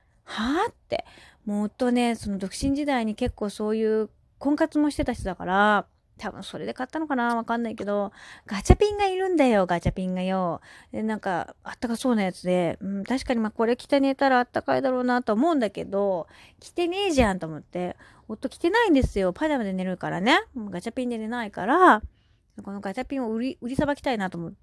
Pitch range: 195-285 Hz